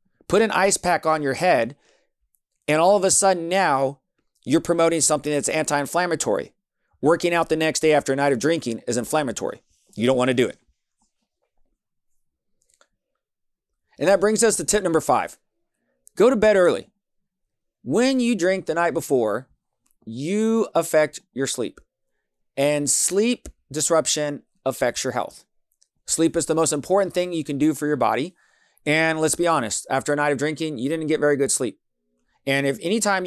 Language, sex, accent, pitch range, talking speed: English, male, American, 135-165 Hz, 170 wpm